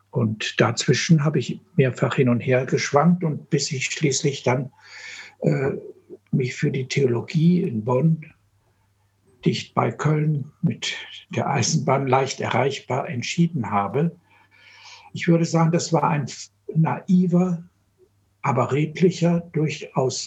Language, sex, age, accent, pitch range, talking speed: German, male, 60-79, German, 130-170 Hz, 120 wpm